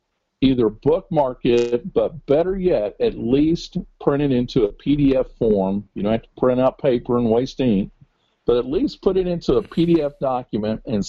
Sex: male